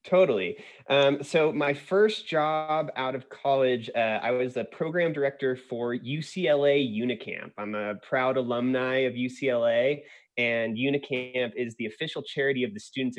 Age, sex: 20-39, male